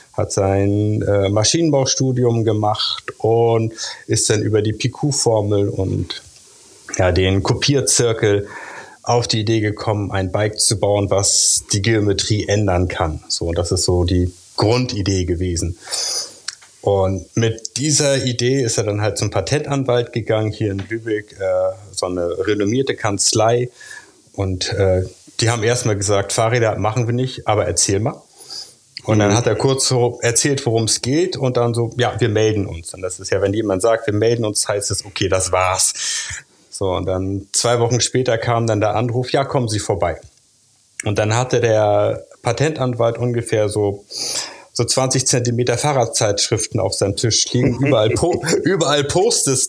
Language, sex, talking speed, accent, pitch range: German, male, 160 wpm, German, 100-120 Hz